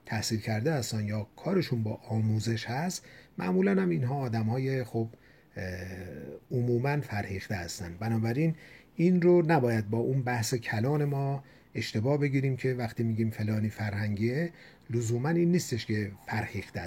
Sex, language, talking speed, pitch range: male, Persian, 130 wpm, 110-145 Hz